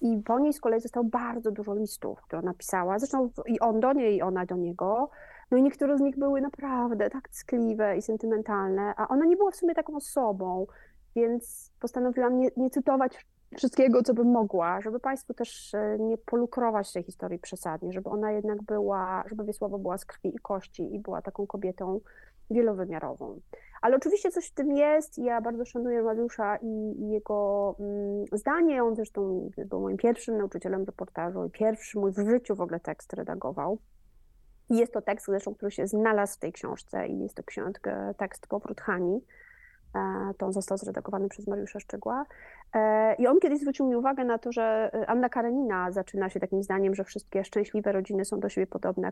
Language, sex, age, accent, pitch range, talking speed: Polish, female, 30-49, native, 195-245 Hz, 185 wpm